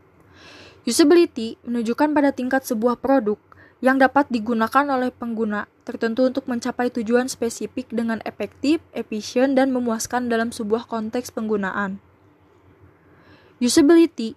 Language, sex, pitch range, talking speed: Indonesian, female, 220-255 Hz, 110 wpm